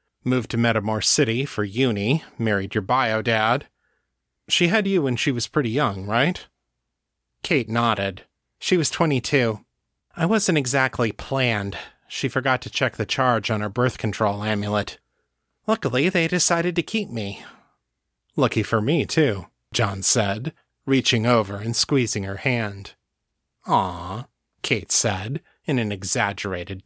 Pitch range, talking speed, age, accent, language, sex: 105-140 Hz, 140 wpm, 30-49, American, English, male